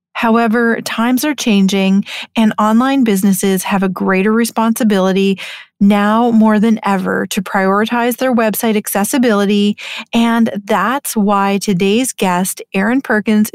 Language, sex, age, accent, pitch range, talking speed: English, female, 30-49, American, 200-235 Hz, 120 wpm